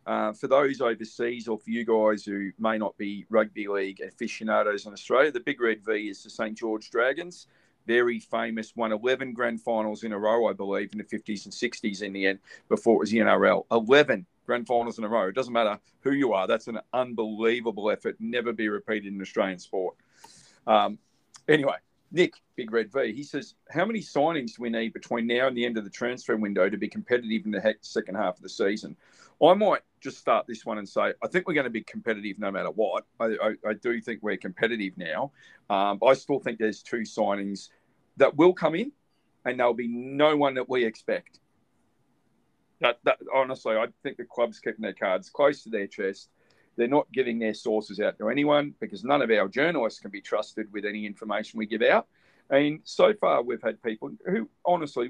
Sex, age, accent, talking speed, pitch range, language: male, 40-59, Australian, 210 wpm, 105-125 Hz, English